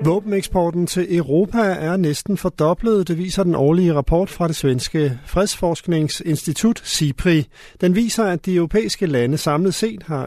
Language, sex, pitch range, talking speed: Danish, male, 145-185 Hz, 145 wpm